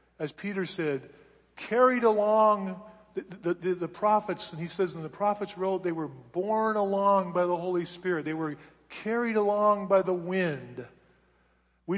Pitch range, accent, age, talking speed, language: 165-210 Hz, American, 40-59, 165 wpm, English